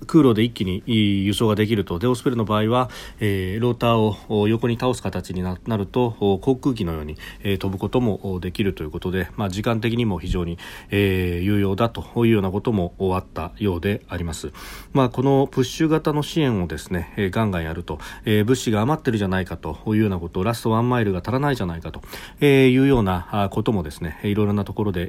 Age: 40-59